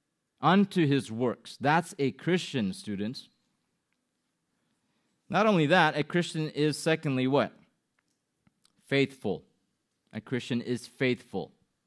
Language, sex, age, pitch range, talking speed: English, male, 30-49, 115-145 Hz, 100 wpm